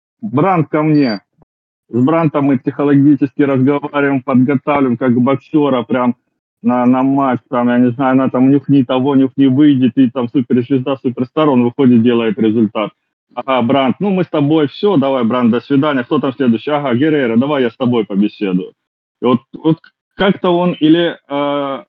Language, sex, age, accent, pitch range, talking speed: Russian, male, 30-49, native, 125-155 Hz, 165 wpm